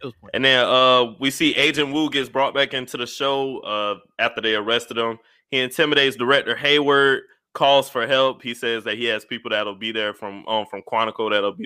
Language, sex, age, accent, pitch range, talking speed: English, male, 20-39, American, 110-145 Hz, 205 wpm